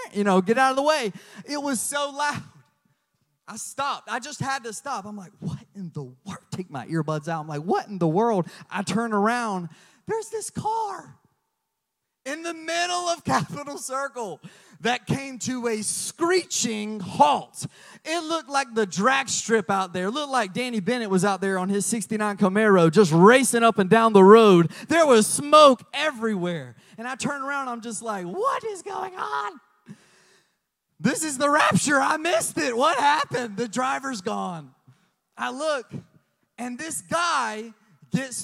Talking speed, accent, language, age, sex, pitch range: 175 wpm, American, English, 30-49, male, 190-285 Hz